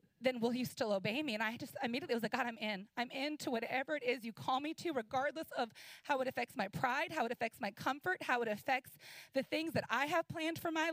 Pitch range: 255-340 Hz